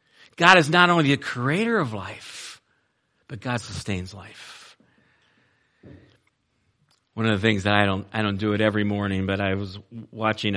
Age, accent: 50-69, American